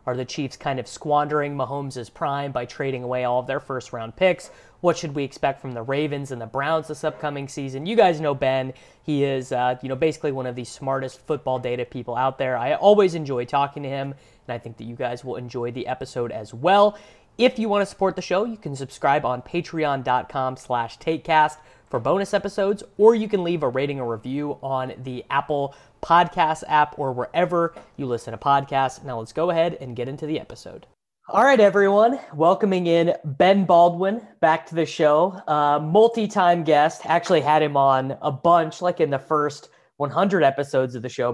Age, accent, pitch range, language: 30-49, American, 130-165 Hz, English